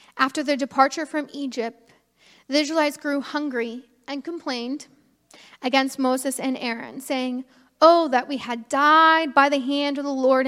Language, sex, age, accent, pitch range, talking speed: English, female, 10-29, American, 255-295 Hz, 155 wpm